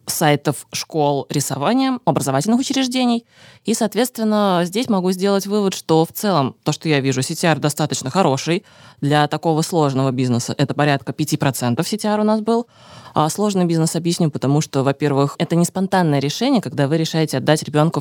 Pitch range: 140-180 Hz